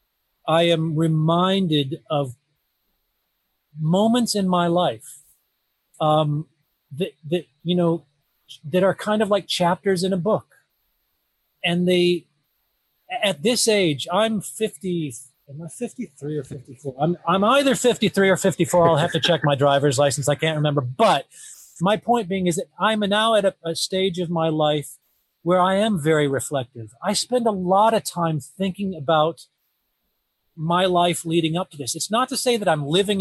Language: English